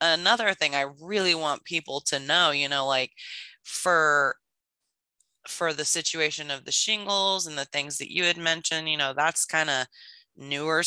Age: 20-39